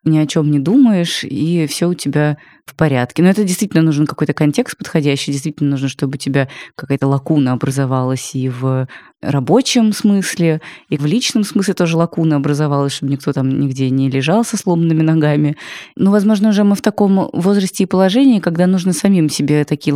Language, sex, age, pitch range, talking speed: Russian, female, 20-39, 145-185 Hz, 180 wpm